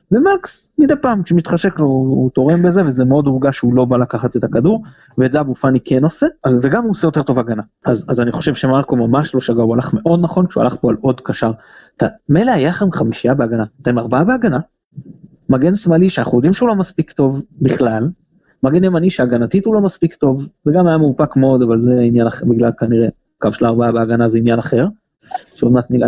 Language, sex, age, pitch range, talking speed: Hebrew, male, 30-49, 130-180 Hz, 200 wpm